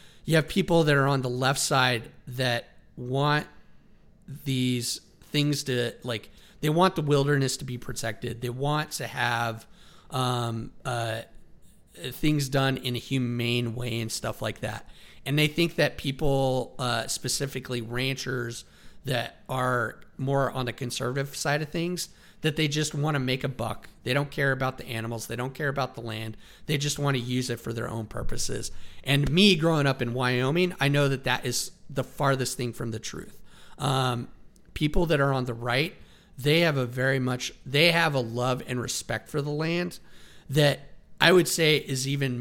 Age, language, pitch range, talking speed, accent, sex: 40-59, English, 120-140 Hz, 185 wpm, American, male